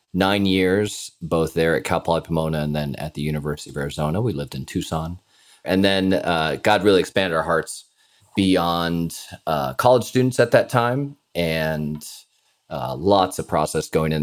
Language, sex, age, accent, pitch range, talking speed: English, male, 30-49, American, 75-95 Hz, 175 wpm